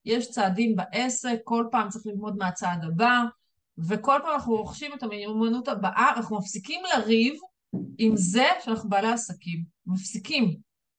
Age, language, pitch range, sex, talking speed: 30-49, Hebrew, 195-245 Hz, female, 135 wpm